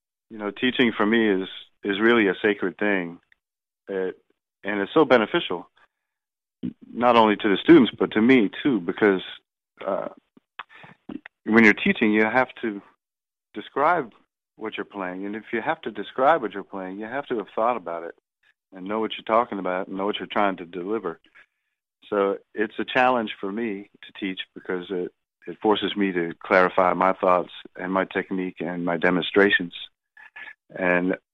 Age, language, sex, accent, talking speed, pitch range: 40-59, English, male, American, 170 wpm, 95-115 Hz